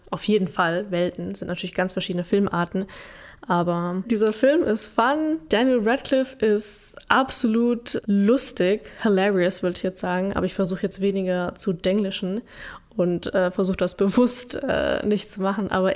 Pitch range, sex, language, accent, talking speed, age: 195-235 Hz, female, German, German, 155 wpm, 10-29